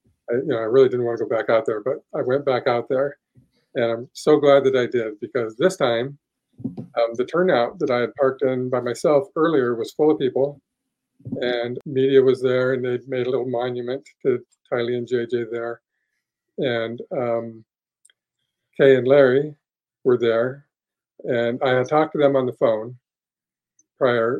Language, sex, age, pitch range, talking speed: English, male, 50-69, 120-140 Hz, 185 wpm